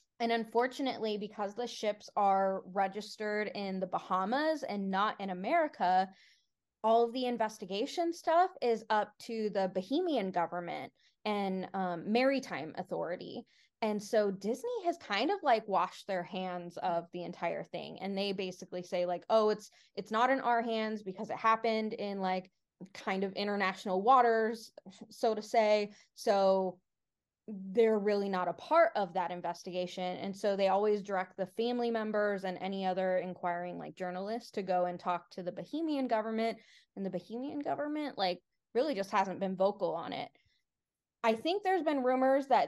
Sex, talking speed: female, 165 wpm